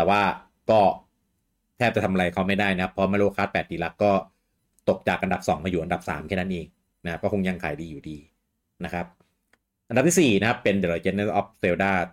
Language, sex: Thai, male